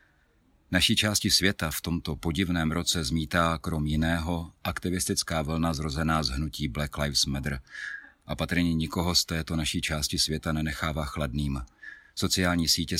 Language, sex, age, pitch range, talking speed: Czech, male, 40-59, 75-85 Hz, 140 wpm